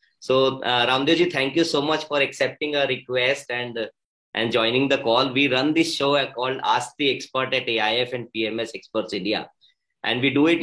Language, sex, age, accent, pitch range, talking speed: English, male, 20-39, Indian, 115-145 Hz, 200 wpm